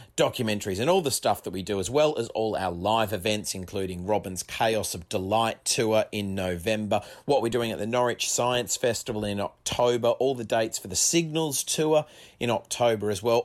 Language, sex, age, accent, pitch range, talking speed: English, male, 30-49, Australian, 90-120 Hz, 195 wpm